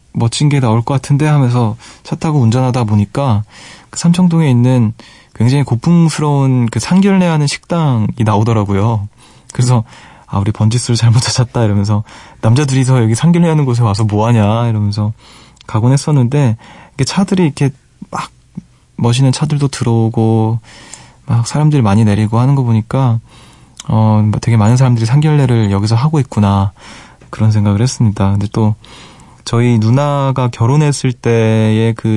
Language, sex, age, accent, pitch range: Korean, male, 20-39, native, 110-135 Hz